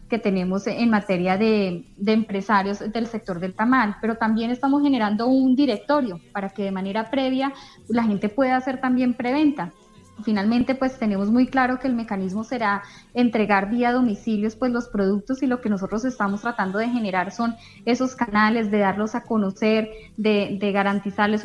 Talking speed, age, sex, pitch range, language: 170 wpm, 10-29, female, 205-245 Hz, Spanish